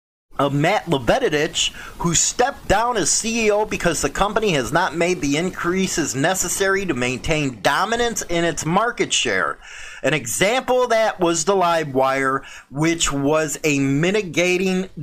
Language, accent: English, American